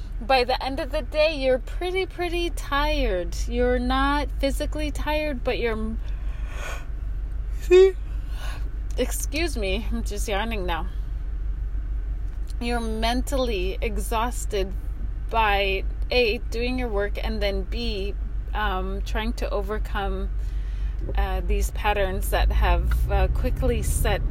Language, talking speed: English, 110 wpm